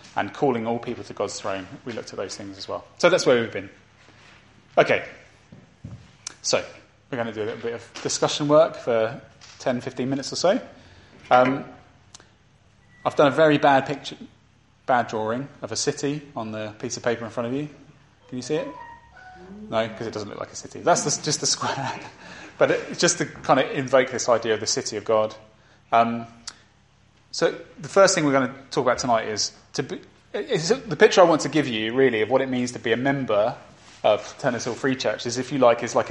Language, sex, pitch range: English, male, 115-145 Hz